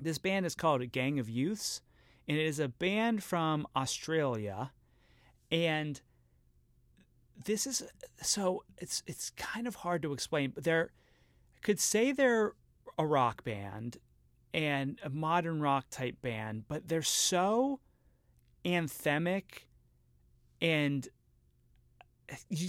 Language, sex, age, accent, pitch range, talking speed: English, male, 30-49, American, 130-180 Hz, 120 wpm